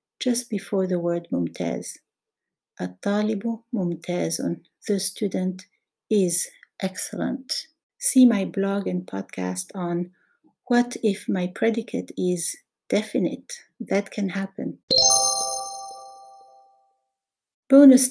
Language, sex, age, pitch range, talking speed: Arabic, female, 60-79, 130-205 Hz, 90 wpm